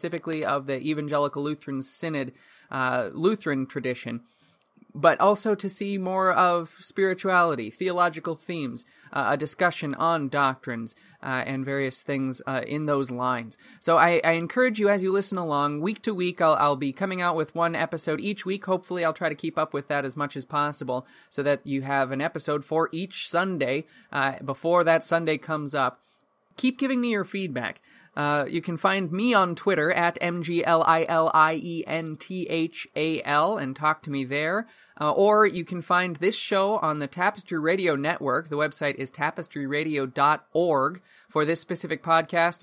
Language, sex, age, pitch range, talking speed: English, male, 20-39, 140-175 Hz, 185 wpm